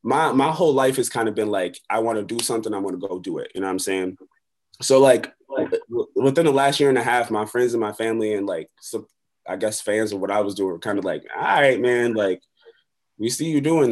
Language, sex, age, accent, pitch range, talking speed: English, male, 20-39, American, 105-145 Hz, 265 wpm